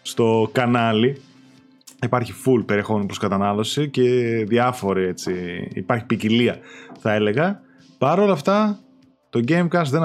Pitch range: 110-150 Hz